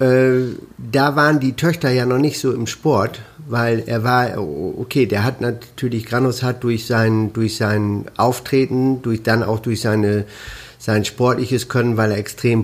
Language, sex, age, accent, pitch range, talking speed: German, male, 50-69, German, 110-125 Hz, 165 wpm